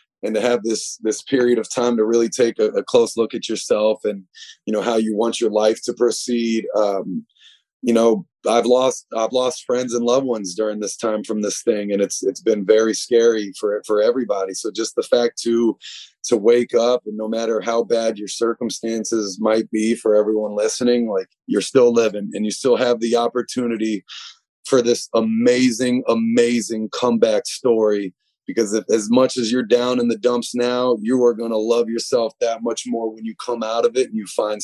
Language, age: English, 30-49